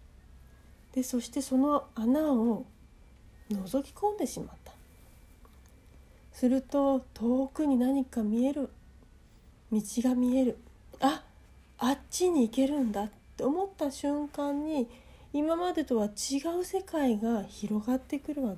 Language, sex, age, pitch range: Japanese, female, 40-59, 220-295 Hz